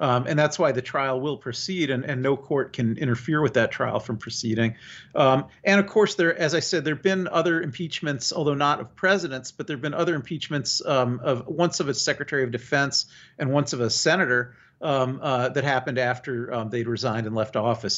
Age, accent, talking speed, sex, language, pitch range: 50-69, American, 215 wpm, male, English, 125-155 Hz